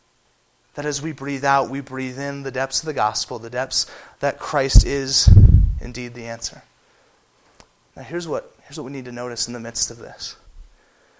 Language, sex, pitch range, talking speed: English, male, 130-150 Hz, 190 wpm